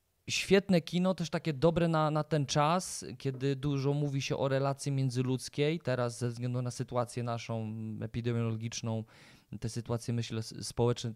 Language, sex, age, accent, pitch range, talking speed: Polish, male, 20-39, native, 110-145 Hz, 145 wpm